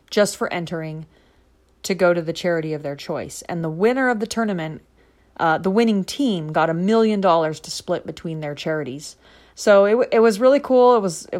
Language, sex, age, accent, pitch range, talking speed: English, female, 30-49, American, 170-220 Hz, 195 wpm